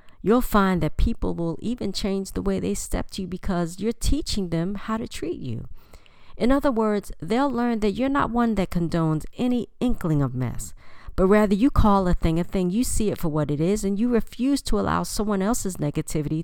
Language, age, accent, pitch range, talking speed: English, 40-59, American, 150-210 Hz, 215 wpm